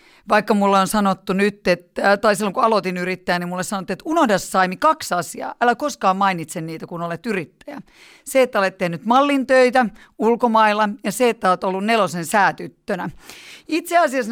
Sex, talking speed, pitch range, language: female, 170 wpm, 180-230 Hz, Finnish